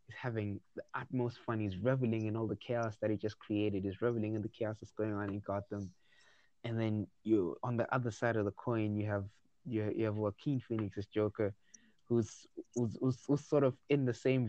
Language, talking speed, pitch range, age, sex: English, 210 wpm, 105-120 Hz, 20-39, male